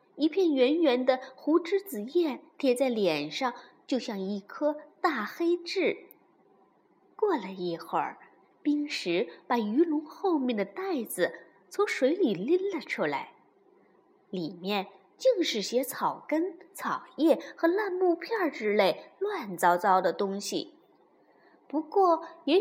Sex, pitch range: female, 235-345 Hz